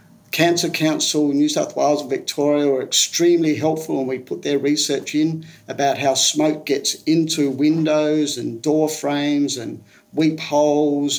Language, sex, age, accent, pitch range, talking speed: English, male, 50-69, Australian, 140-165 Hz, 155 wpm